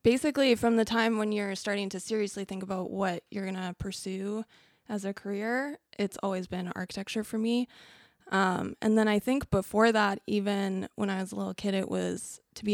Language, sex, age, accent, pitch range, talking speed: English, female, 20-39, American, 185-215 Hz, 205 wpm